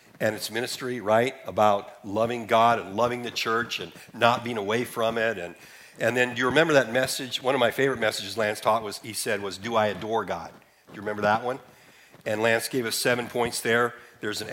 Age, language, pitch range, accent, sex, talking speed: 50-69, English, 105-125 Hz, American, male, 225 wpm